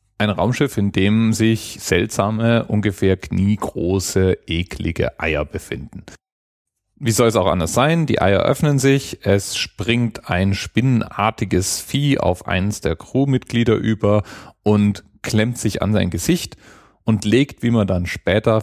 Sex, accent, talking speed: male, German, 140 wpm